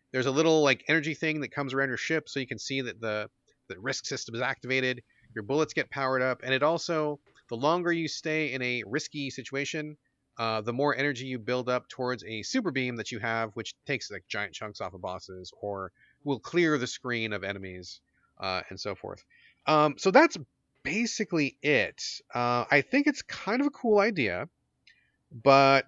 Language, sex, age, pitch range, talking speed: English, male, 30-49, 125-160 Hz, 200 wpm